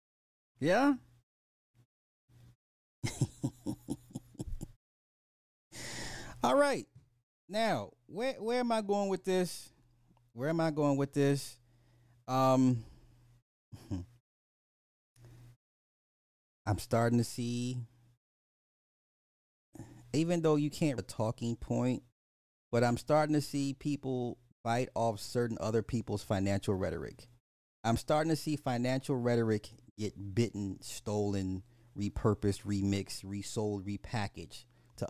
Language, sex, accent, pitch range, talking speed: English, male, American, 110-140 Hz, 95 wpm